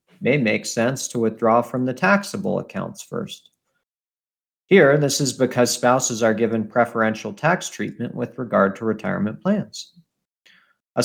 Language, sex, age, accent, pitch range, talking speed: English, male, 50-69, American, 115-155 Hz, 140 wpm